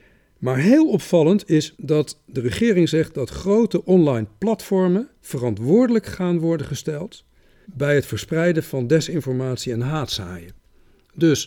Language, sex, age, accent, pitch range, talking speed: Dutch, male, 50-69, Dutch, 120-175 Hz, 125 wpm